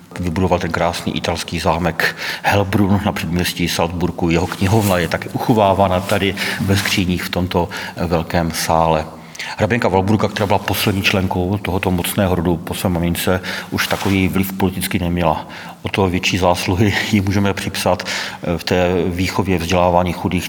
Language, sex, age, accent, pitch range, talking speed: Czech, male, 40-59, native, 90-100 Hz, 145 wpm